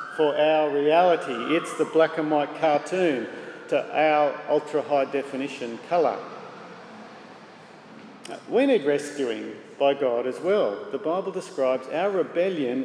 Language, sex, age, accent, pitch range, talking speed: English, male, 50-69, Australian, 140-175 Hz, 125 wpm